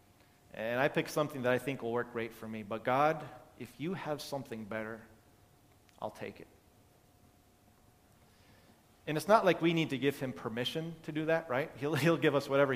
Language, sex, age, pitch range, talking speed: English, male, 30-49, 115-140 Hz, 195 wpm